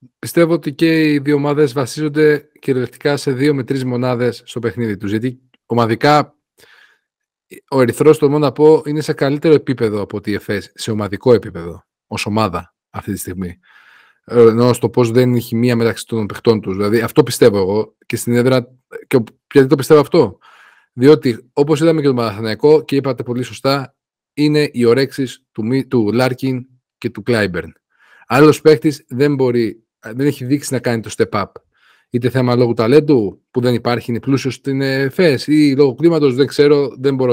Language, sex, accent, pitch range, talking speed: Greek, male, native, 115-145 Hz, 175 wpm